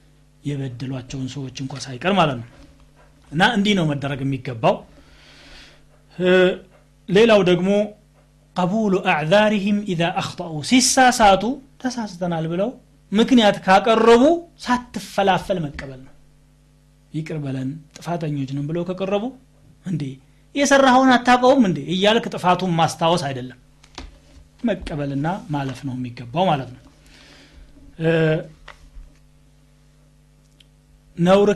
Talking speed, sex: 40 wpm, male